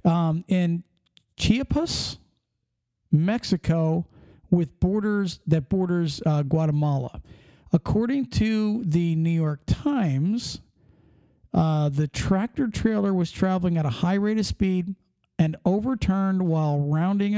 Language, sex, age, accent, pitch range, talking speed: English, male, 50-69, American, 160-210 Hz, 110 wpm